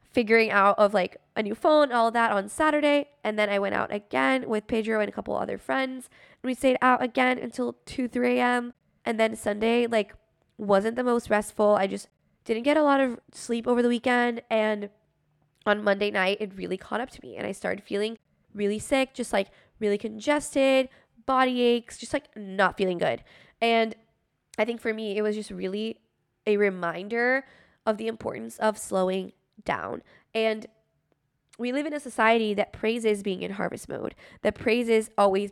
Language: English